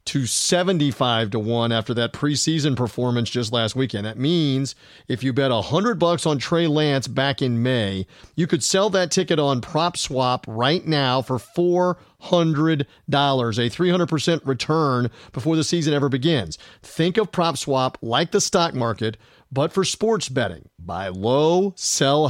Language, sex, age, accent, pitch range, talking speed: English, male, 40-59, American, 125-175 Hz, 160 wpm